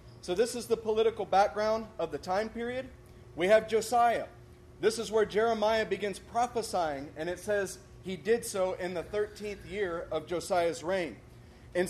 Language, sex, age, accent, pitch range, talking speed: English, male, 30-49, American, 180-225 Hz, 165 wpm